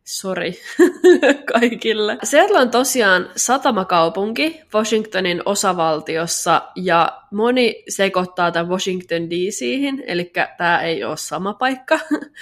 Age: 20-39